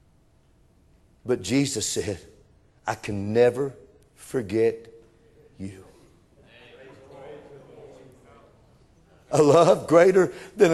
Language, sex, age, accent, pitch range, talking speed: English, male, 50-69, American, 130-195 Hz, 65 wpm